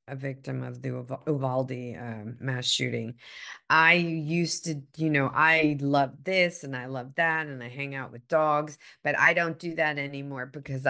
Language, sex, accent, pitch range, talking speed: English, female, American, 125-155 Hz, 185 wpm